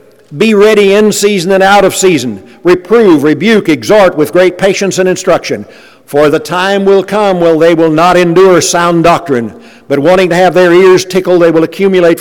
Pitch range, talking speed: 155-205 Hz, 185 wpm